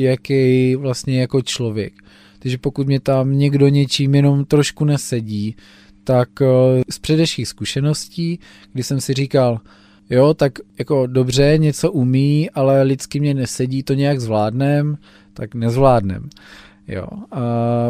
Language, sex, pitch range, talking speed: Czech, male, 120-135 Hz, 125 wpm